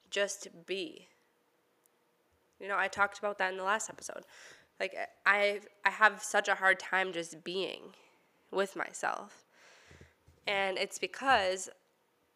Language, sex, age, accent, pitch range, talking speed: English, female, 10-29, American, 185-240 Hz, 125 wpm